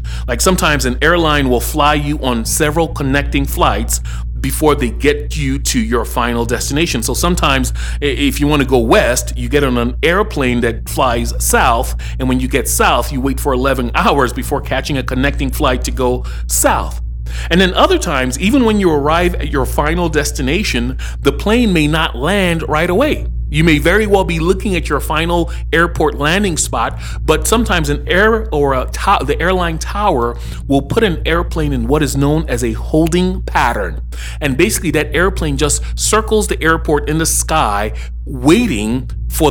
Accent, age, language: American, 40-59, English